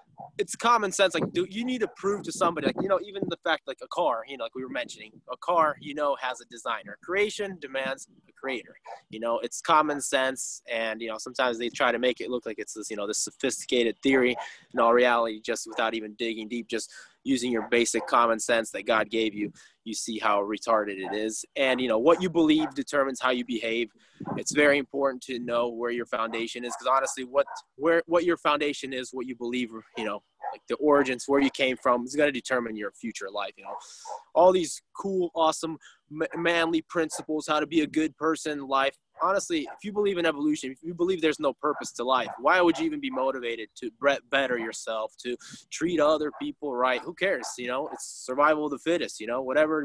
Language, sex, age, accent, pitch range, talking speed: English, male, 20-39, American, 120-165 Hz, 225 wpm